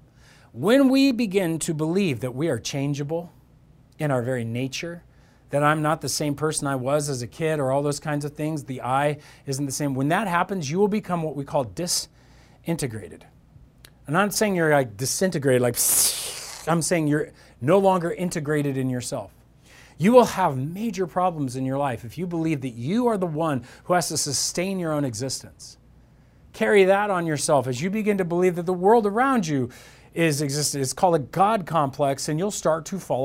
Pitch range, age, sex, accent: 135-185 Hz, 40-59, male, American